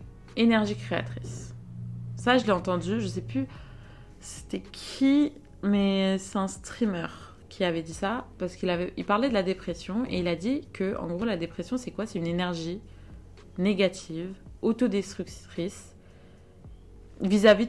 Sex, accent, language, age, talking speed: female, French, French, 20-39, 140 wpm